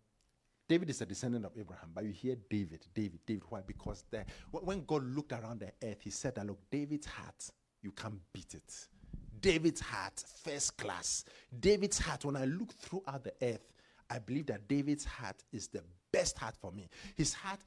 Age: 50-69